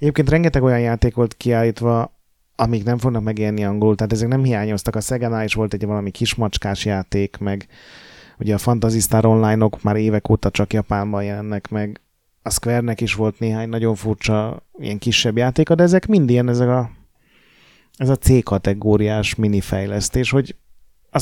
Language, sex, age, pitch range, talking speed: Hungarian, male, 30-49, 105-125 Hz, 165 wpm